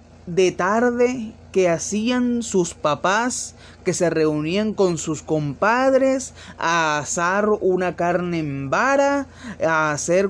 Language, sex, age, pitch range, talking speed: Spanish, male, 30-49, 180-265 Hz, 115 wpm